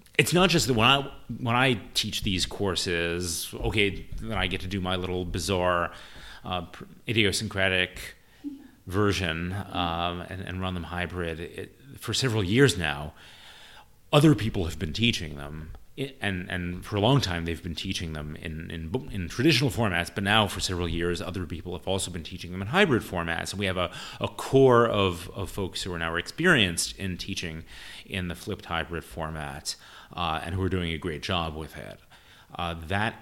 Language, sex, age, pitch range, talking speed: English, male, 30-49, 85-105 Hz, 185 wpm